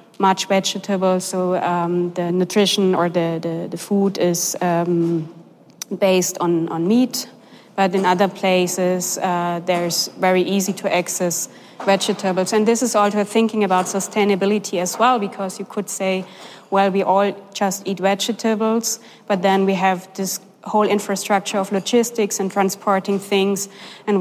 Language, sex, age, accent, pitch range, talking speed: German, female, 20-39, German, 185-210 Hz, 145 wpm